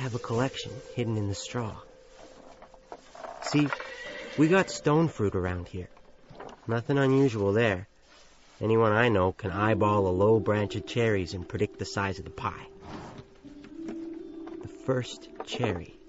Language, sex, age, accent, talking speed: English, male, 40-59, American, 140 wpm